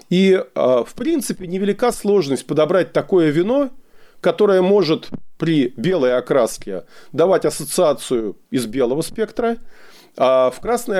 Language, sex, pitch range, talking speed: Russian, male, 140-205 Hz, 115 wpm